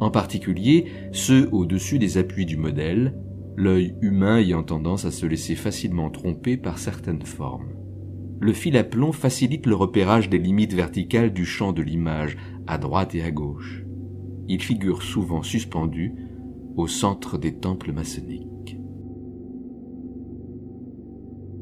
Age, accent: 50-69, French